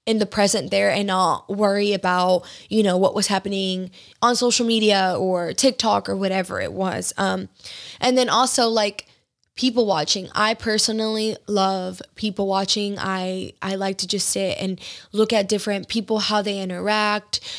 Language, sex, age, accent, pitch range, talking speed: English, female, 10-29, American, 195-220 Hz, 165 wpm